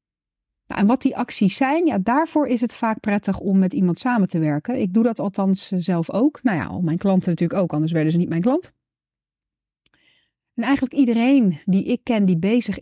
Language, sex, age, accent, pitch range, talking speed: Dutch, female, 40-59, Dutch, 185-255 Hz, 195 wpm